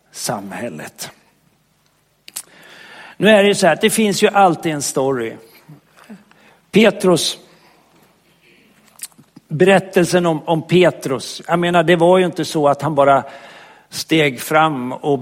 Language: Swedish